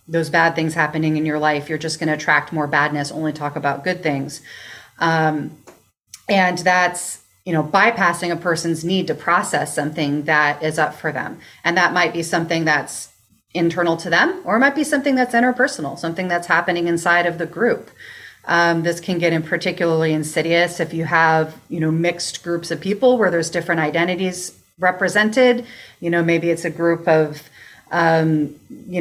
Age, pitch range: 30-49, 160-185 Hz